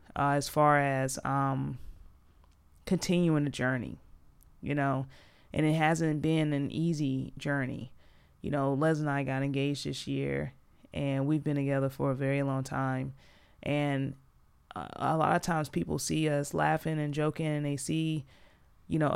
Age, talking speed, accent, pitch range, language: 20-39, 165 wpm, American, 135-160 Hz, English